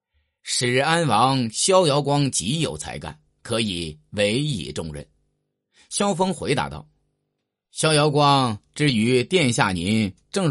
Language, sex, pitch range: Chinese, male, 90-145 Hz